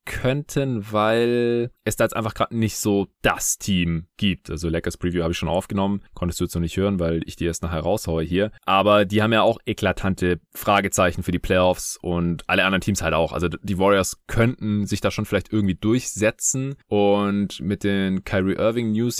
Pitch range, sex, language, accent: 85-110 Hz, male, German, German